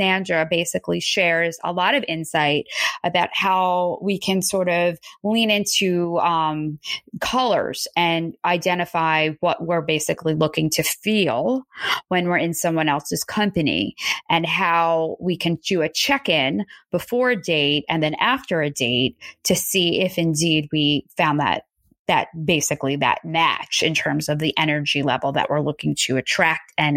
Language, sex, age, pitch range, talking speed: English, female, 20-39, 165-205 Hz, 155 wpm